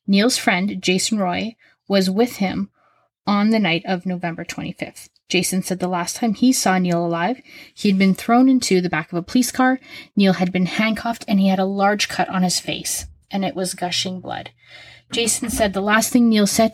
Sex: female